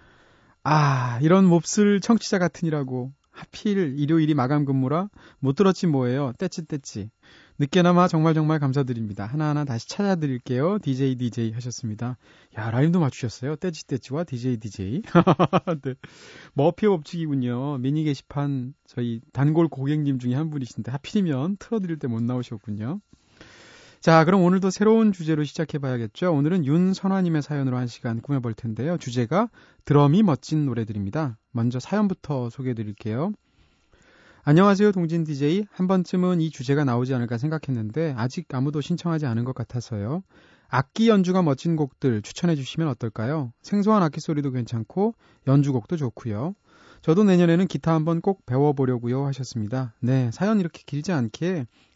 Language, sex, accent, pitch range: Korean, male, native, 125-175 Hz